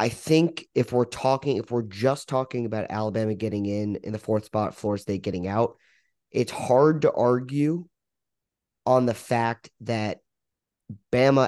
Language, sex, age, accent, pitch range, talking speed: English, male, 30-49, American, 110-130 Hz, 155 wpm